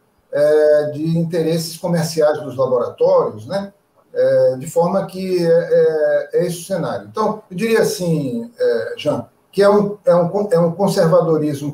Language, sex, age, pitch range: Portuguese, male, 50-69, 160-205 Hz